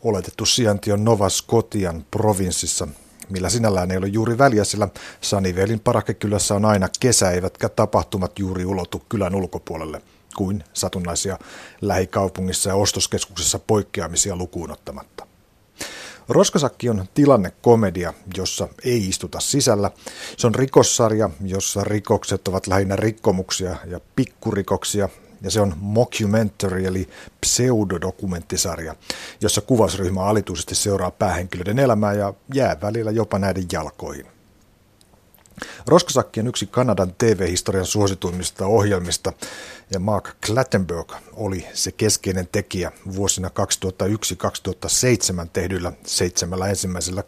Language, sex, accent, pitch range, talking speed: Finnish, male, native, 95-110 Hz, 110 wpm